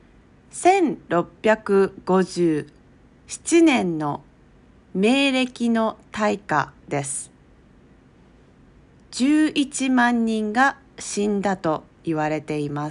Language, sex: Japanese, female